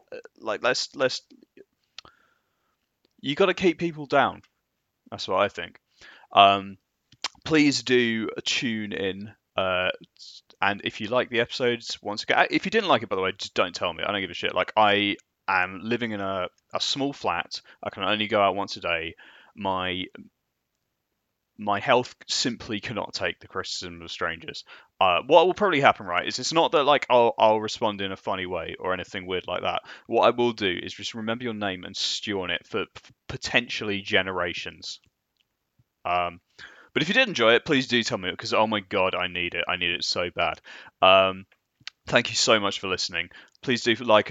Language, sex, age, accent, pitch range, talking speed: English, male, 20-39, British, 100-125 Hz, 195 wpm